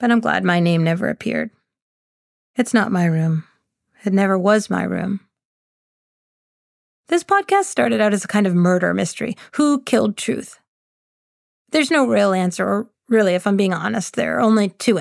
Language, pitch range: English, 190-225 Hz